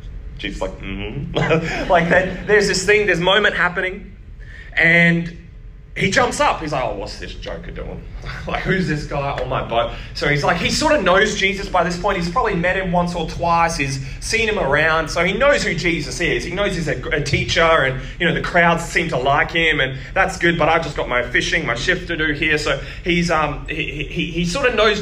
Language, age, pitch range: English, 20-39, 155-215 Hz